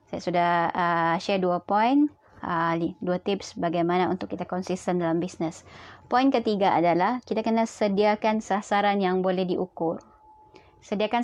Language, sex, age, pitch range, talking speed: Malay, male, 20-39, 175-225 Hz, 135 wpm